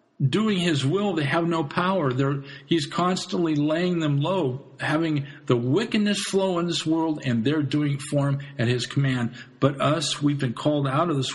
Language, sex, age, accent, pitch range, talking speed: English, male, 50-69, American, 110-145 Hz, 195 wpm